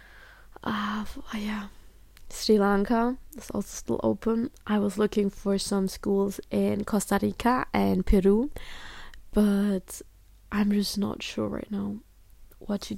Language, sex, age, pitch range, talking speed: English, female, 20-39, 200-240 Hz, 135 wpm